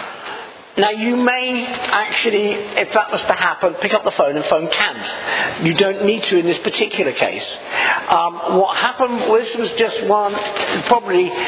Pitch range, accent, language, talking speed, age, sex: 200-265 Hz, British, English, 160 wpm, 50-69, male